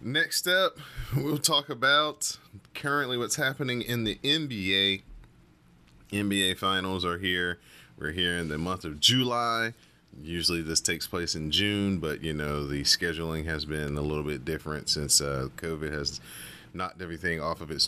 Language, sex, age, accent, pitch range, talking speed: English, male, 30-49, American, 80-100 Hz, 160 wpm